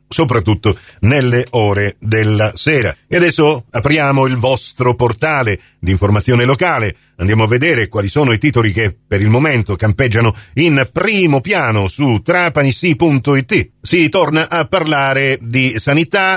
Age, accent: 40-59, native